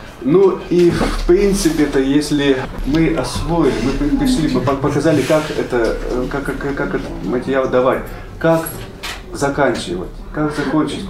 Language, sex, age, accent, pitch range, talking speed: Russian, male, 20-39, native, 115-145 Hz, 130 wpm